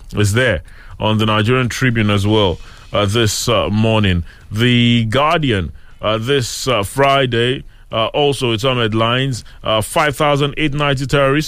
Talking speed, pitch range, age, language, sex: 135 wpm, 110-140 Hz, 30-49, English, male